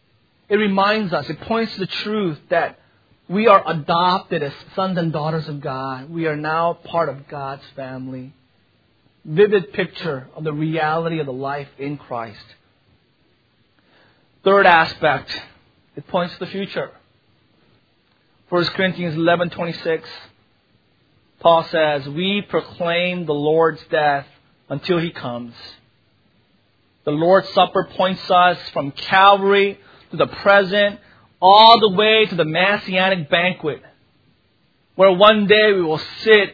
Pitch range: 155-210 Hz